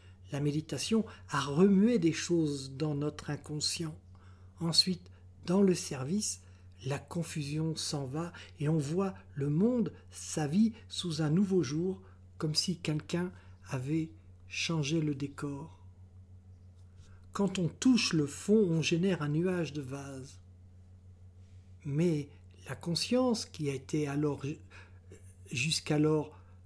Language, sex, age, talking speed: French, male, 60-79, 120 wpm